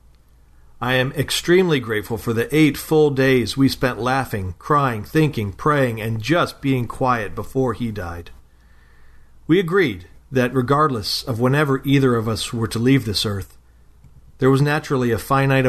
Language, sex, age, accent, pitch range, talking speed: English, male, 40-59, American, 90-130 Hz, 155 wpm